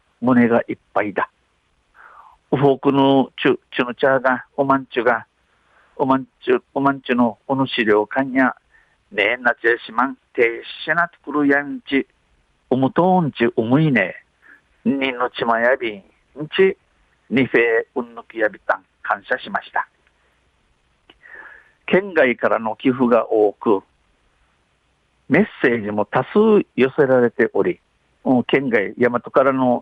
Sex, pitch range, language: male, 120-170 Hz, Japanese